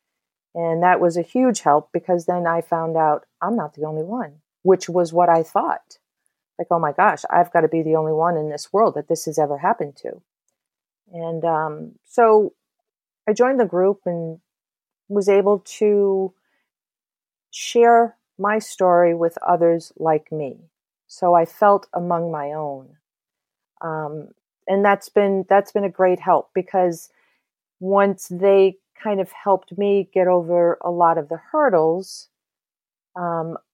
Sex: female